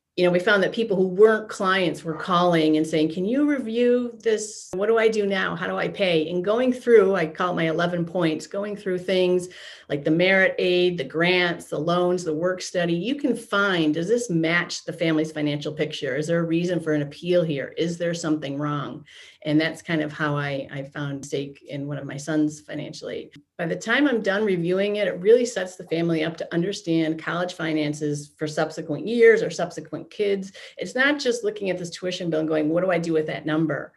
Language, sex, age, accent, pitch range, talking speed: English, female, 40-59, American, 160-225 Hz, 225 wpm